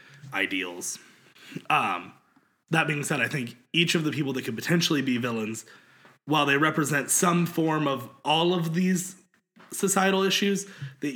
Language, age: English, 20-39